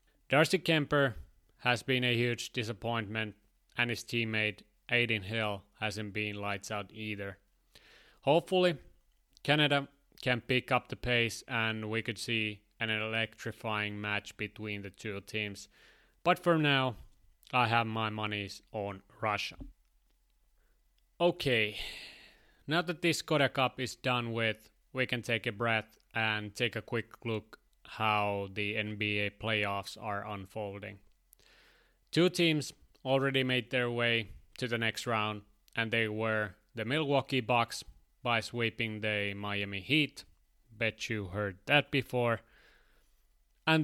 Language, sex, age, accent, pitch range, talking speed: English, male, 30-49, Finnish, 105-125 Hz, 130 wpm